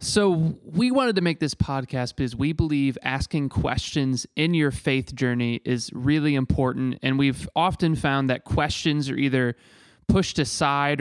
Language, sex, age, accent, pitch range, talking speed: English, male, 20-39, American, 125-150 Hz, 160 wpm